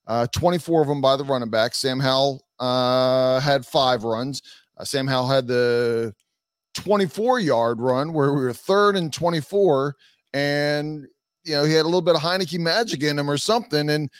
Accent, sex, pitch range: American, male, 130-170 Hz